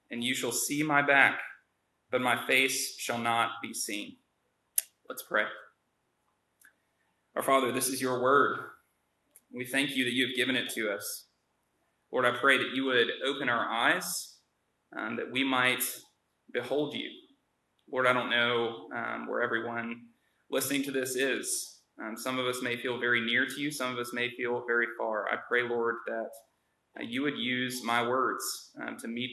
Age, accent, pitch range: 20-39, American, 120-140 Hz